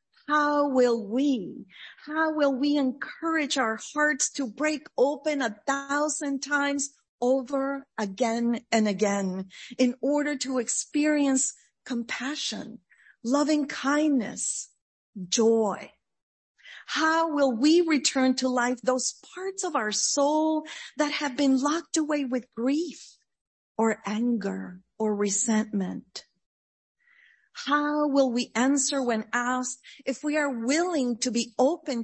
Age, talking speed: 40-59, 115 wpm